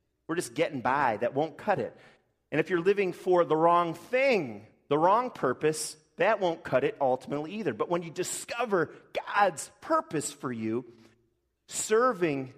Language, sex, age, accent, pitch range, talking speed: English, male, 30-49, American, 110-180 Hz, 160 wpm